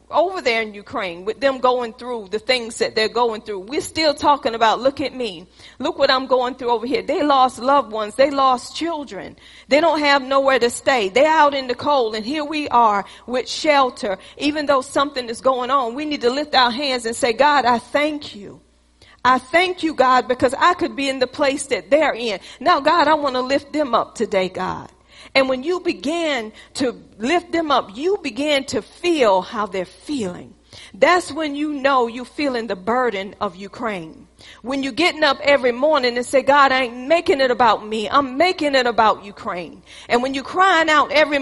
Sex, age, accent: female, 40-59, American